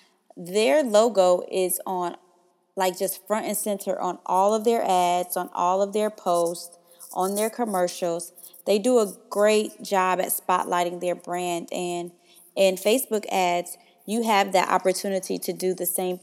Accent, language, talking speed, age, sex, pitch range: American, English, 160 wpm, 20-39, female, 180-210 Hz